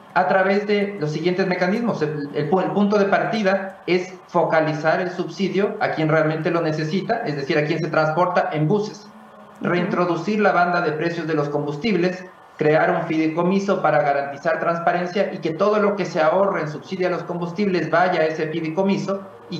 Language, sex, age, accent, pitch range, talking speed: English, male, 40-59, Mexican, 150-185 Hz, 185 wpm